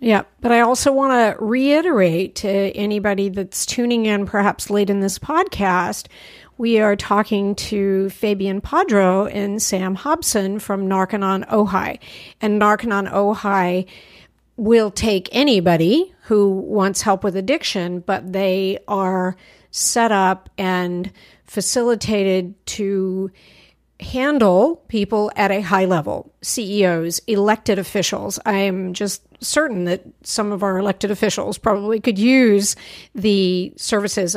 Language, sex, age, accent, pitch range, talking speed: English, female, 50-69, American, 185-215 Hz, 125 wpm